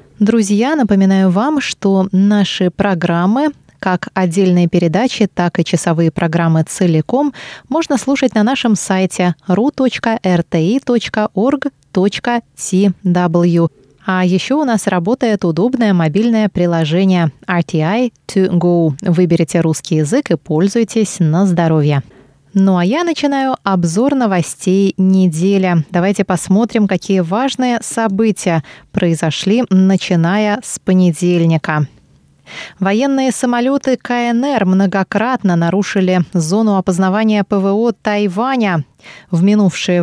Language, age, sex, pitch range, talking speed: Russian, 20-39, female, 175-220 Hz, 95 wpm